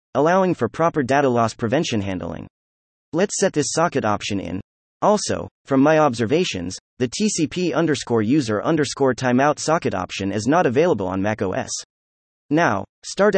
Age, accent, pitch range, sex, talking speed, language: 30-49, American, 110-160 Hz, male, 145 wpm, English